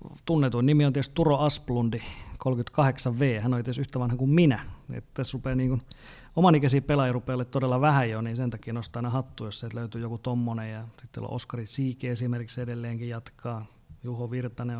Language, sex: Finnish, male